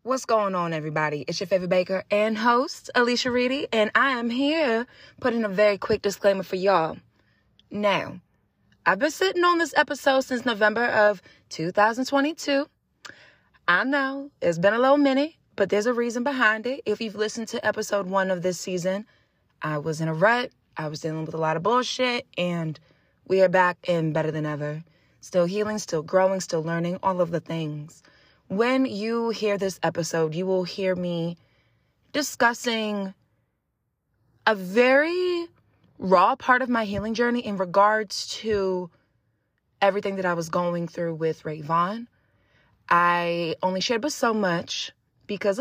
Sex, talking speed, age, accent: female, 160 wpm, 20-39, American